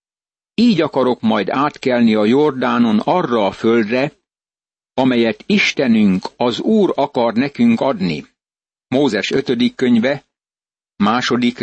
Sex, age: male, 60-79